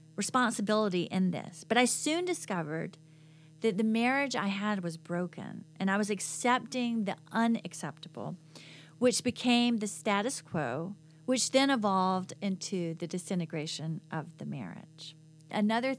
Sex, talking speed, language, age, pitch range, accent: female, 130 wpm, English, 40-59, 170-225 Hz, American